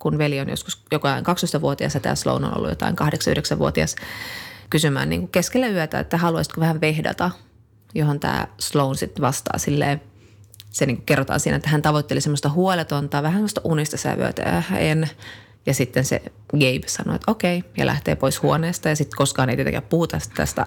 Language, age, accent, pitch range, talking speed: Finnish, 30-49, native, 135-160 Hz, 185 wpm